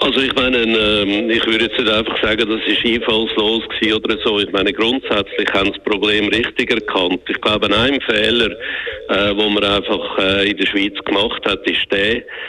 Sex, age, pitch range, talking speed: male, 50-69, 95-105 Hz, 180 wpm